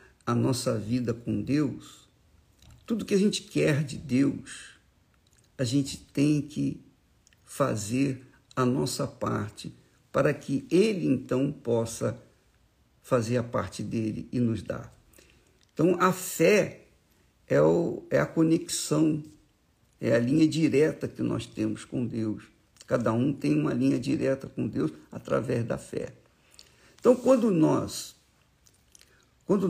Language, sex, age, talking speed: Portuguese, male, 60-79, 125 wpm